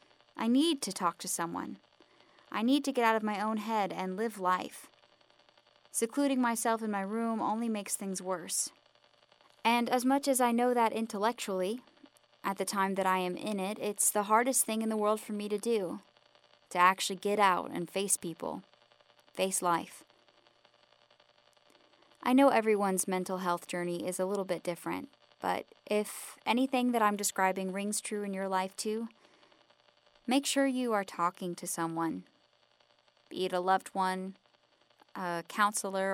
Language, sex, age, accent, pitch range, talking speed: English, female, 10-29, American, 180-225 Hz, 165 wpm